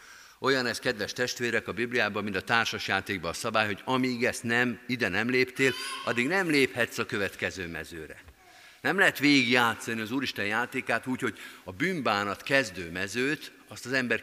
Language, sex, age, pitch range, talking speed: Hungarian, male, 50-69, 105-140 Hz, 170 wpm